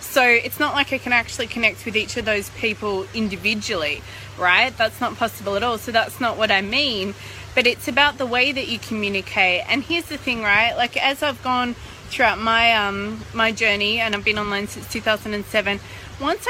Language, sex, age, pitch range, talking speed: English, female, 20-39, 195-245 Hz, 195 wpm